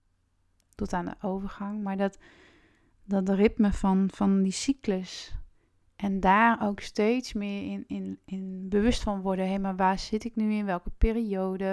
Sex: female